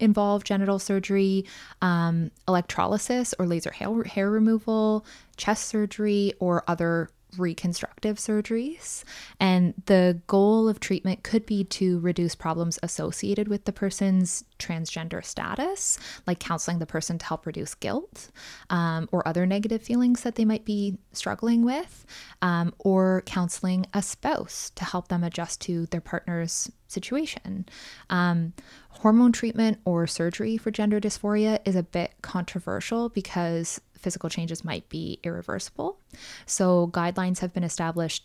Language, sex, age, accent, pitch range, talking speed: English, female, 20-39, American, 170-210 Hz, 135 wpm